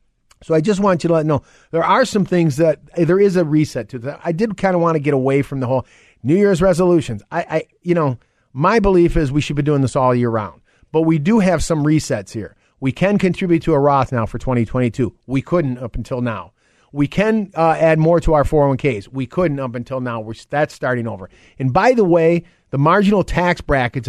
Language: English